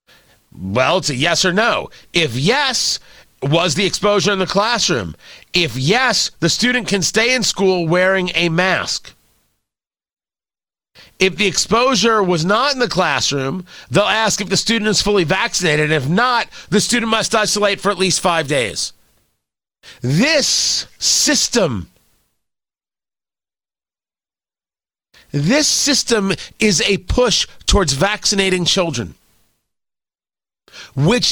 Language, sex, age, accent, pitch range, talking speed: English, male, 40-59, American, 180-230 Hz, 120 wpm